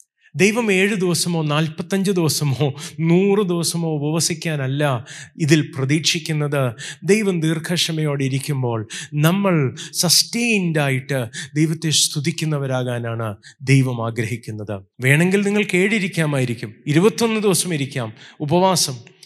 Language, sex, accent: Malayalam, male, native